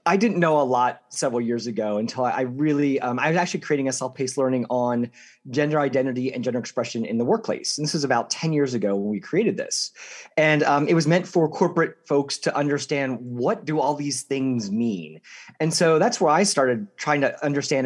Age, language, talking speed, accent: 30-49, English, 215 wpm, American